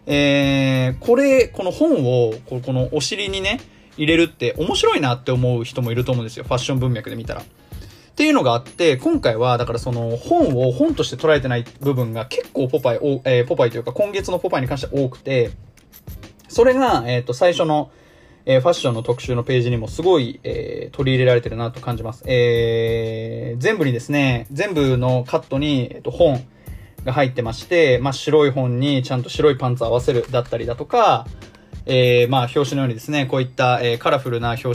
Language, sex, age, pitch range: Japanese, male, 20-39, 120-150 Hz